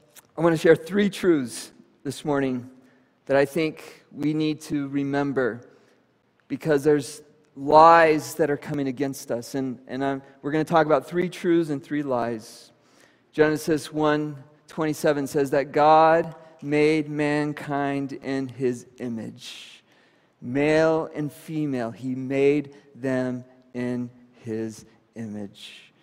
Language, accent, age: English, American, 40-59